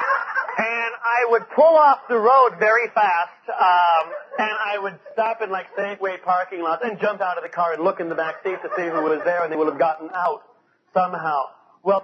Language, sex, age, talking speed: English, male, 40-59, 210 wpm